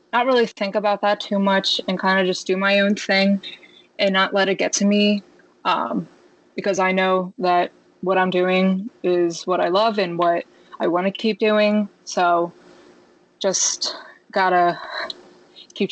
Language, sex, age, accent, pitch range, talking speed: English, female, 20-39, American, 180-200 Hz, 175 wpm